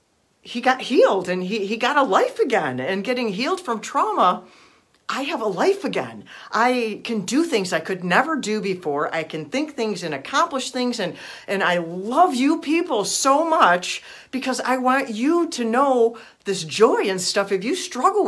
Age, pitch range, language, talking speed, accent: 50-69, 185-260 Hz, English, 185 wpm, American